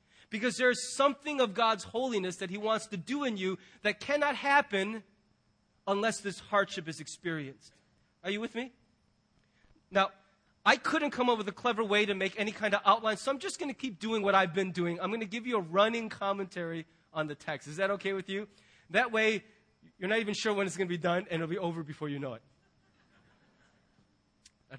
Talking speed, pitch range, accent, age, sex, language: 215 wpm, 150-220 Hz, American, 30-49, male, English